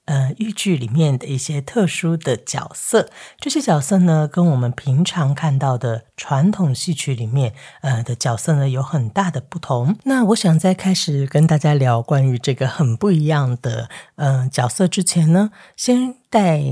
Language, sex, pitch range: Chinese, female, 135-175 Hz